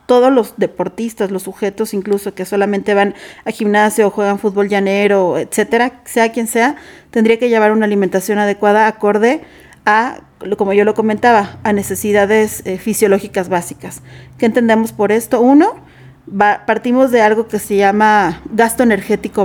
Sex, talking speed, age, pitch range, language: female, 155 wpm, 40-59, 200-230 Hz, Spanish